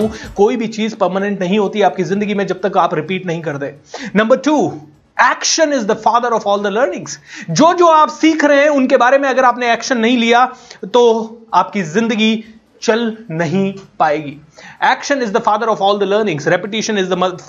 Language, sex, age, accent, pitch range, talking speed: Hindi, male, 30-49, native, 215-285 Hz, 190 wpm